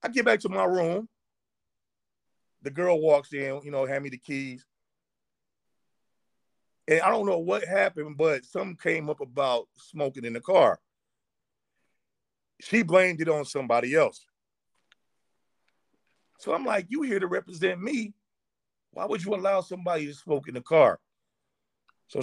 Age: 40-59